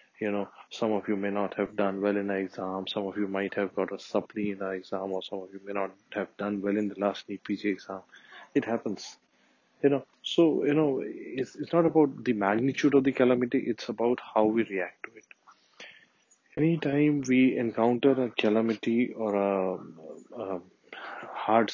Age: 20-39